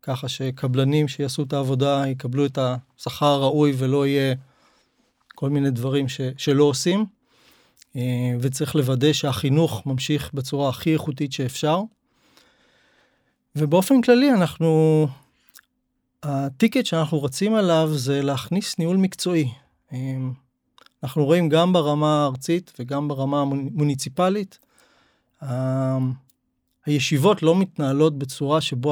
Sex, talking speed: male, 100 wpm